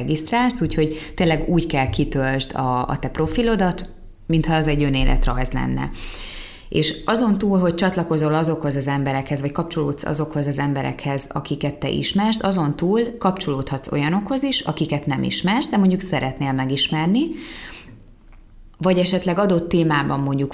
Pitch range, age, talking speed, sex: 140-180 Hz, 20-39, 135 wpm, female